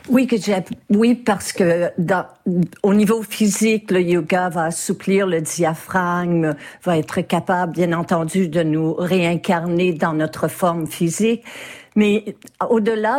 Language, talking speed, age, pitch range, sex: French, 125 wpm, 50-69, 175-215 Hz, female